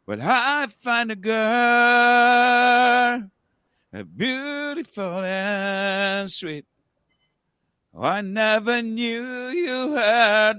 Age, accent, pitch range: 40-59, American, 210-245 Hz